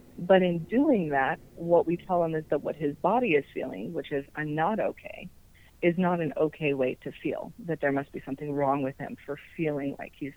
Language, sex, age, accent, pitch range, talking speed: English, female, 30-49, American, 145-175 Hz, 225 wpm